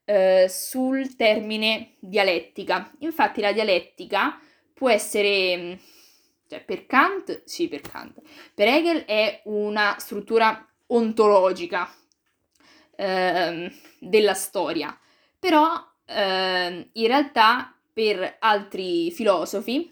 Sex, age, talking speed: female, 20-39, 90 wpm